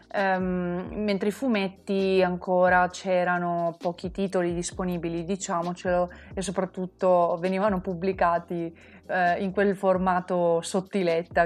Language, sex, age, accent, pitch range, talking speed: Italian, female, 20-39, native, 175-195 Hz, 90 wpm